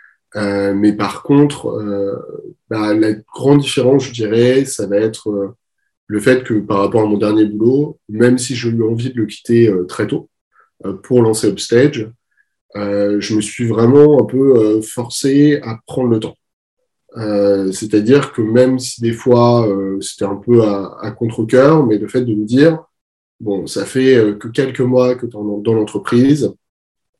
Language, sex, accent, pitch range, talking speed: French, male, French, 105-130 Hz, 185 wpm